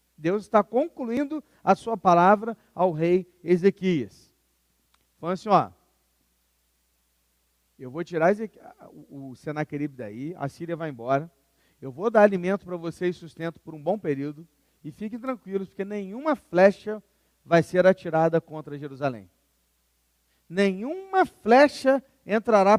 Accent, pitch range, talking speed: Brazilian, 150-225 Hz, 125 wpm